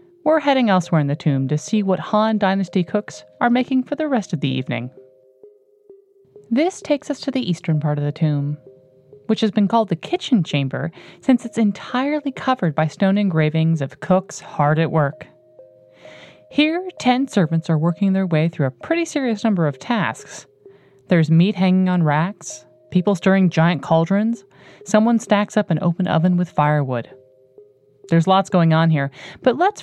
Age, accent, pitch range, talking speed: 30-49, American, 155-230 Hz, 175 wpm